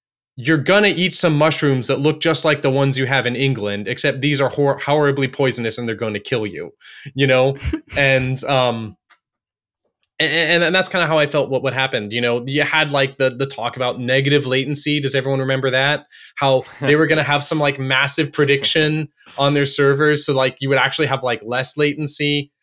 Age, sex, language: 20-39, male, English